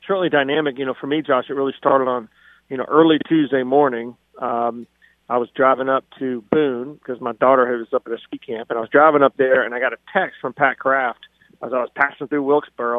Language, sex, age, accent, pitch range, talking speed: English, male, 40-59, American, 125-135 Hz, 240 wpm